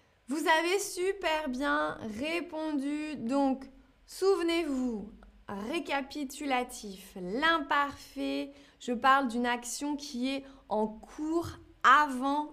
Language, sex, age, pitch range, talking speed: French, female, 20-39, 230-290 Hz, 85 wpm